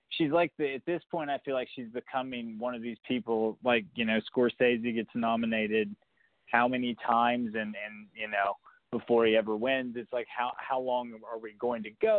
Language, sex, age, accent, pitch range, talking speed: English, male, 20-39, American, 115-145 Hz, 205 wpm